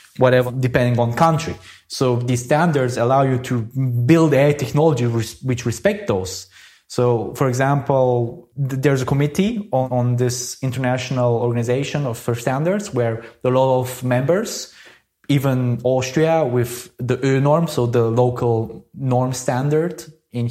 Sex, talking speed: male, 145 wpm